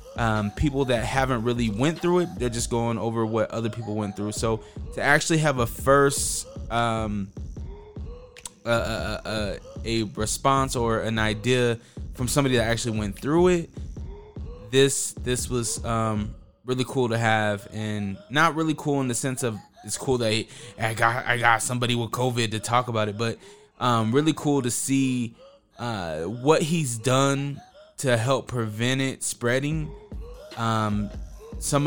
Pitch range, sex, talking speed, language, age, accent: 110-135 Hz, male, 165 wpm, English, 20-39, American